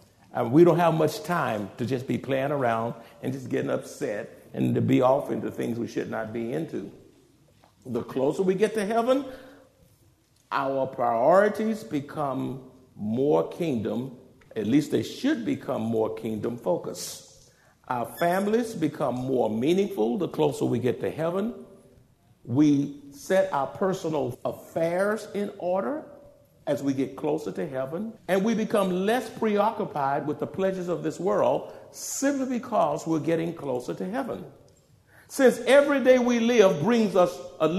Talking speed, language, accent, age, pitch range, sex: 150 wpm, English, American, 50-69, 130-215 Hz, male